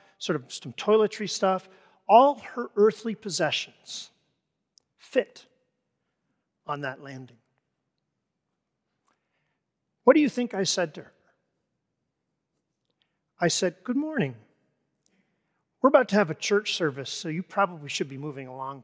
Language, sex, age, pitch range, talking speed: English, male, 40-59, 165-220 Hz, 125 wpm